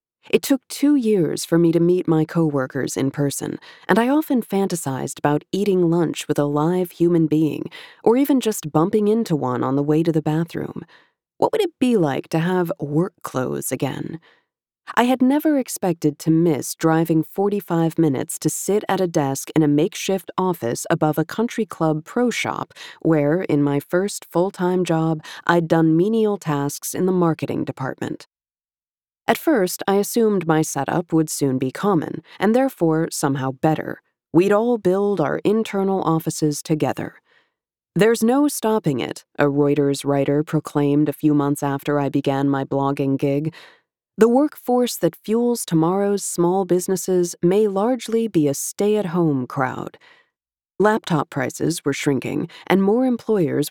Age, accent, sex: 30-49, American, female